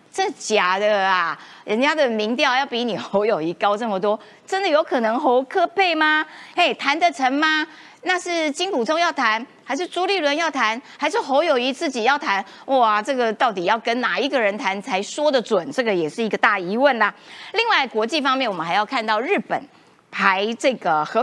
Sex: female